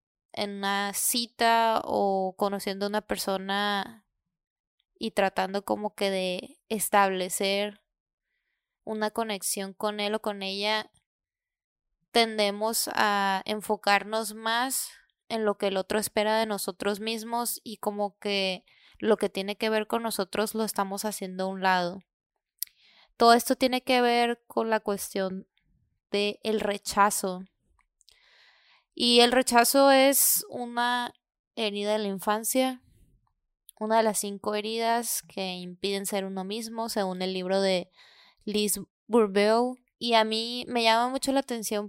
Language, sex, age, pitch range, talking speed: Spanish, female, 20-39, 200-230 Hz, 135 wpm